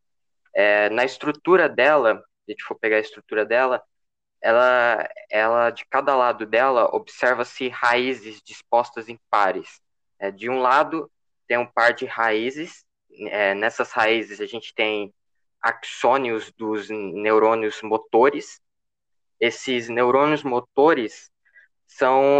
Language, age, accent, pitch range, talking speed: Portuguese, 10-29, Brazilian, 115-140 Hz, 120 wpm